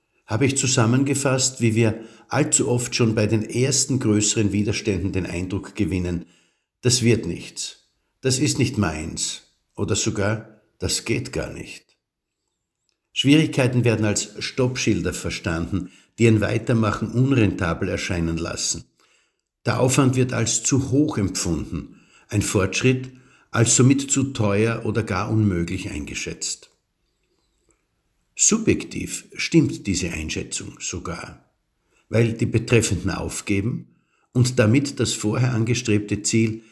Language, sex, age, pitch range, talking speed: German, male, 60-79, 95-125 Hz, 120 wpm